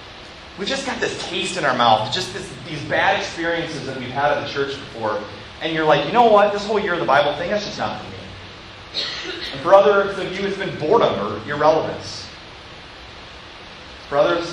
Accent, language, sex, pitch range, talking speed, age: American, English, male, 120-170 Hz, 205 wpm, 30-49